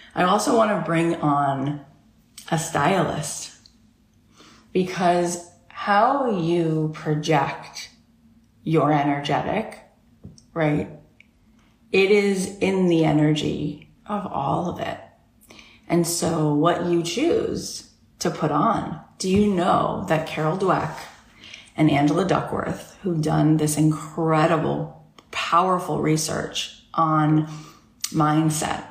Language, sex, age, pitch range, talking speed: English, female, 30-49, 150-170 Hz, 100 wpm